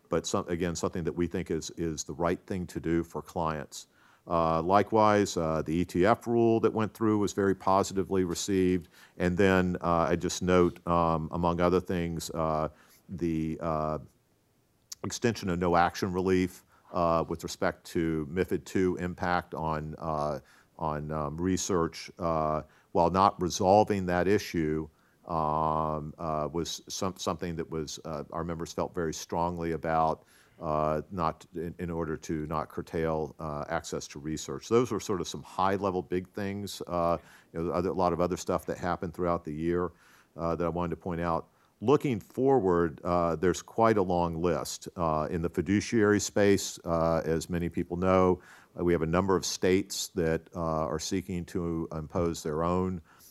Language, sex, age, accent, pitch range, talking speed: English, male, 50-69, American, 80-95 Hz, 175 wpm